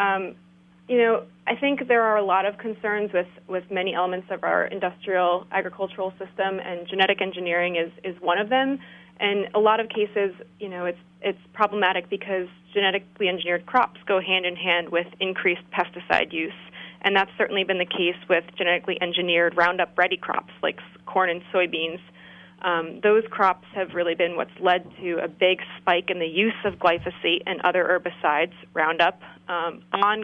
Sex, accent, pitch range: female, American, 175-205 Hz